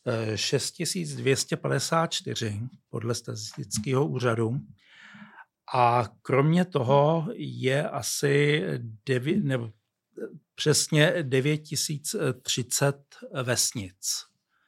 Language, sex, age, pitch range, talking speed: Czech, male, 60-79, 120-150 Hz, 50 wpm